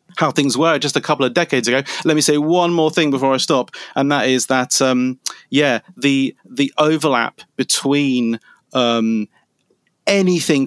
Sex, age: male, 30-49